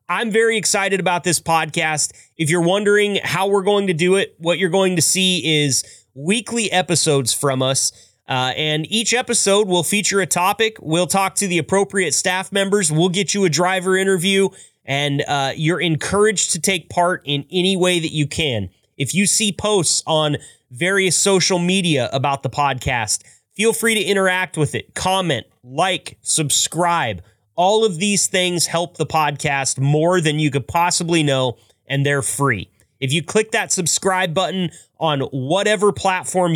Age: 30-49